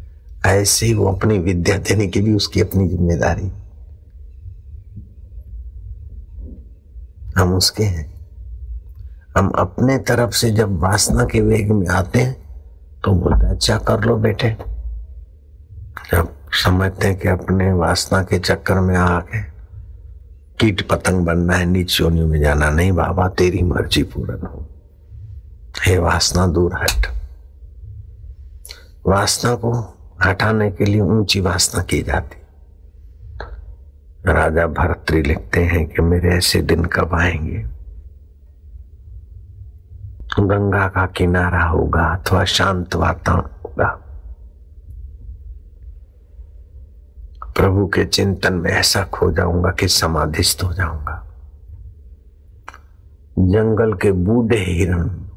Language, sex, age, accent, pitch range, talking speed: Hindi, male, 60-79, native, 80-95 Hz, 105 wpm